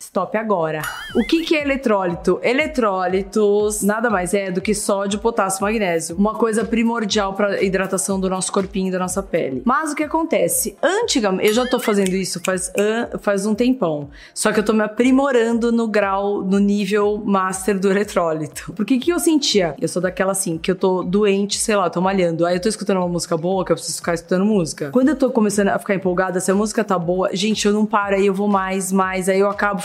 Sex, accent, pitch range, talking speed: female, Brazilian, 190-240 Hz, 220 wpm